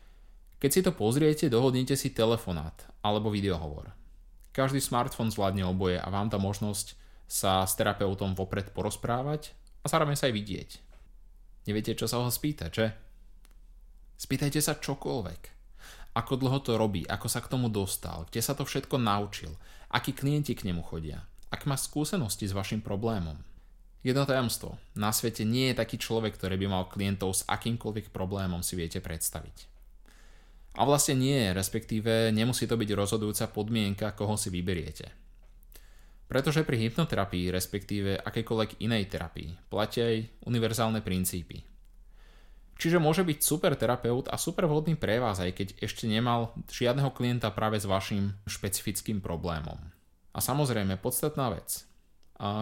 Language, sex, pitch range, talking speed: Slovak, male, 95-130 Hz, 145 wpm